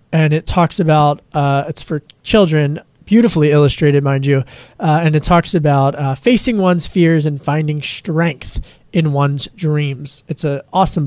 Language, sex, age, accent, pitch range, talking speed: English, male, 20-39, American, 155-200 Hz, 165 wpm